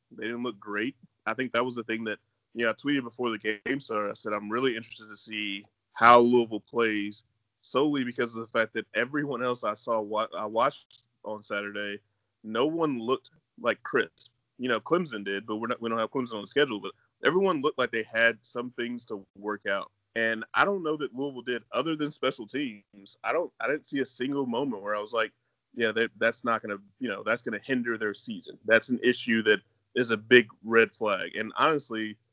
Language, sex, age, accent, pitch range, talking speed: English, male, 20-39, American, 110-125 Hz, 220 wpm